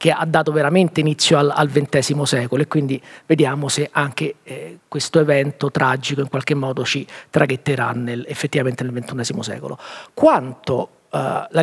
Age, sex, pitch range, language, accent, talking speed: 40-59, male, 140-160 Hz, Italian, native, 160 wpm